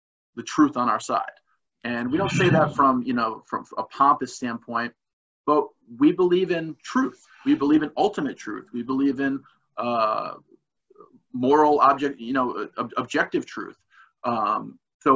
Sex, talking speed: male, 155 wpm